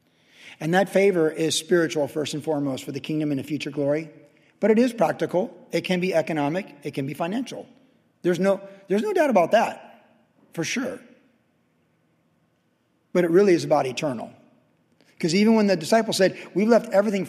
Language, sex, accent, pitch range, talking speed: English, male, American, 150-210 Hz, 175 wpm